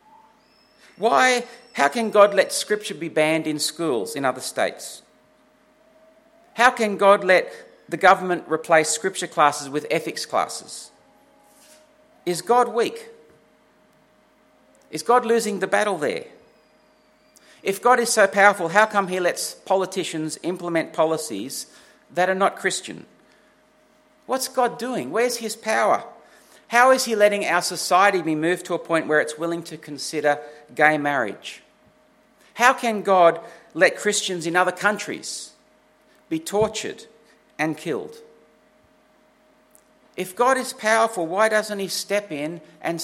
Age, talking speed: 50-69, 135 wpm